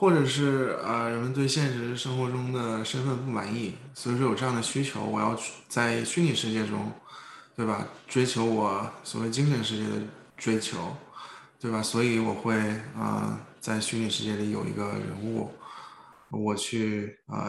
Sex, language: male, Chinese